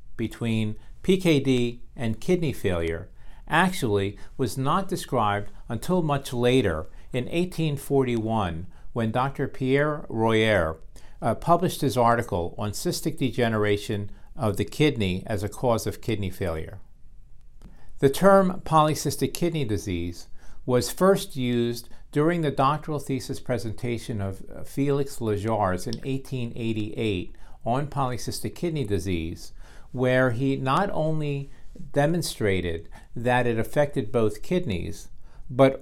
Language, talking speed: English, 115 wpm